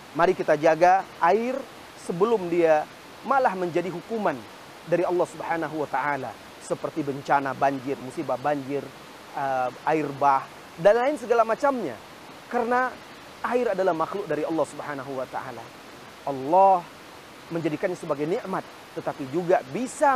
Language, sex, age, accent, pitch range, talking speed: Indonesian, male, 30-49, native, 155-220 Hz, 120 wpm